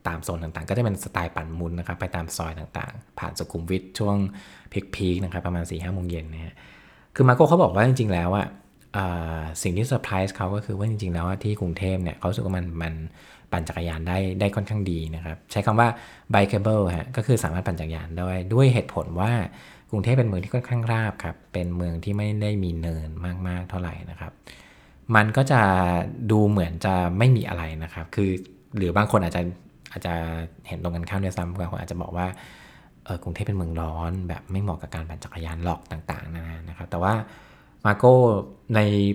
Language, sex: Thai, male